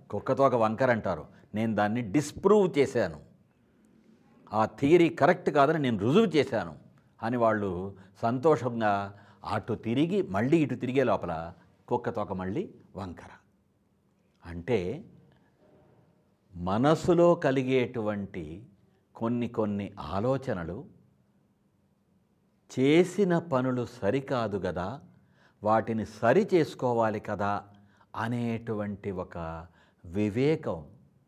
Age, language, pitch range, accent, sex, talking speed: 60-79, English, 95-130 Hz, Indian, male, 60 wpm